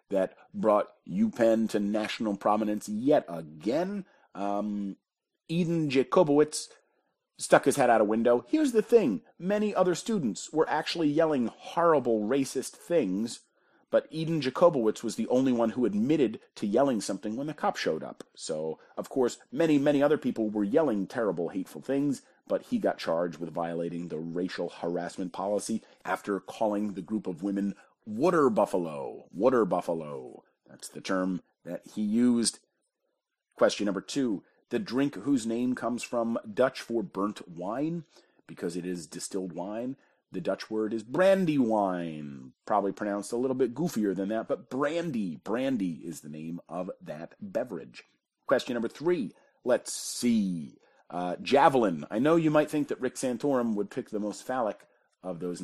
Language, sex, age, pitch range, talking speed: English, male, 40-59, 95-150 Hz, 160 wpm